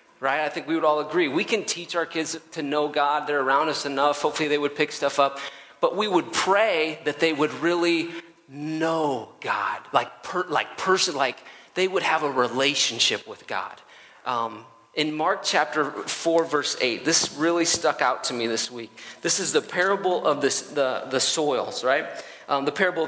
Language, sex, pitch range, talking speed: English, male, 140-170 Hz, 195 wpm